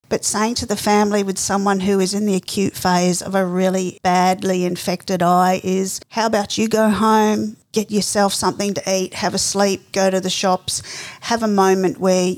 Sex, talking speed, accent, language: female, 200 wpm, Australian, English